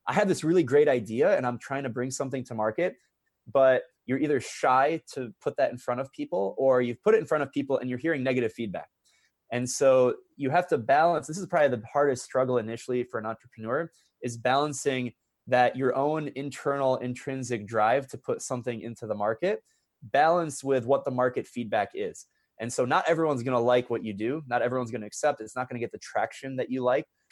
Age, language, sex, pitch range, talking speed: 20-39, English, male, 120-145 Hz, 220 wpm